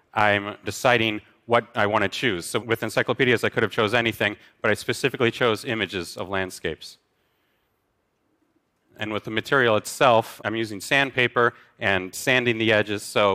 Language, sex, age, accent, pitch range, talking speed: English, male, 40-59, American, 100-125 Hz, 155 wpm